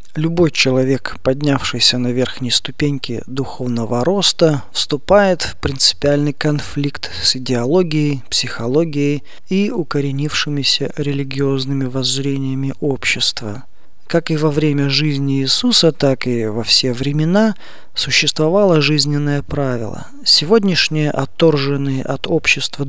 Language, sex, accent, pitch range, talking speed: Russian, male, native, 130-155 Hz, 100 wpm